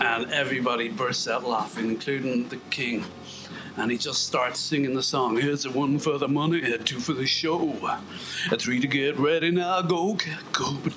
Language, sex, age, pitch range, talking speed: English, male, 60-79, 120-150 Hz, 195 wpm